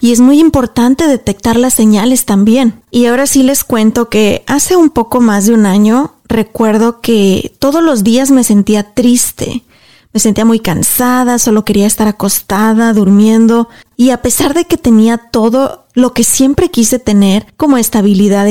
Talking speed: 170 wpm